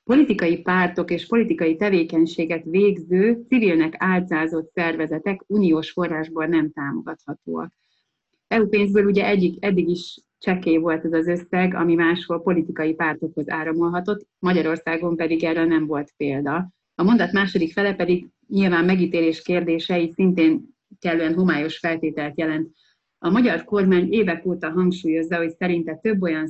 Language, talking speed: Hungarian, 130 wpm